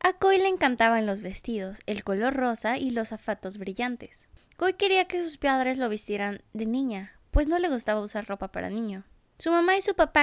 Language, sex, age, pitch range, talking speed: Spanish, female, 20-39, 225-310 Hz, 205 wpm